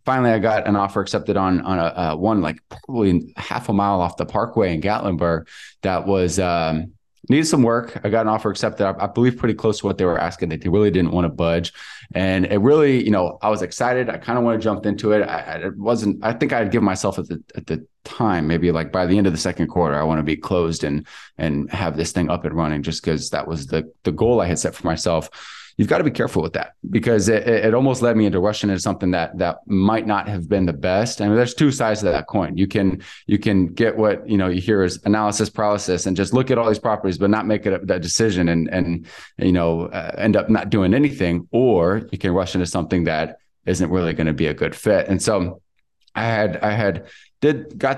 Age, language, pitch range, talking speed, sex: 20-39, English, 90-110 Hz, 255 wpm, male